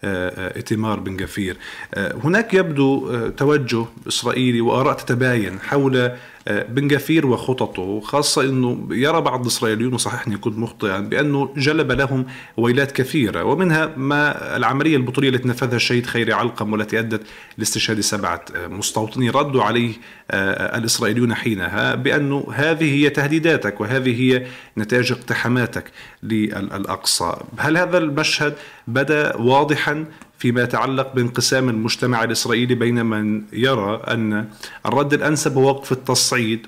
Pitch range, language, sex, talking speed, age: 110-135 Hz, Arabic, male, 125 wpm, 50-69